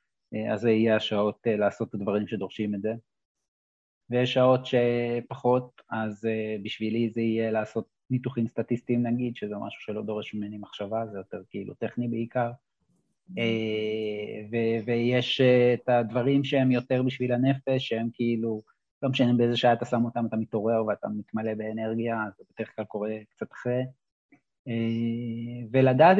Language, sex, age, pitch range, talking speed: Hebrew, male, 30-49, 110-125 Hz, 140 wpm